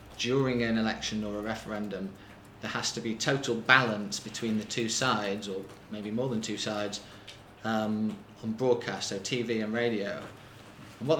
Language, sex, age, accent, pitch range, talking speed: English, male, 20-39, British, 110-125 Hz, 160 wpm